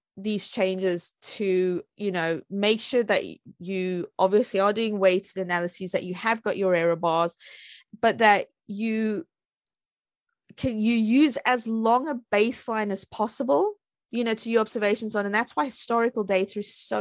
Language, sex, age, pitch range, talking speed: English, female, 20-39, 195-250 Hz, 160 wpm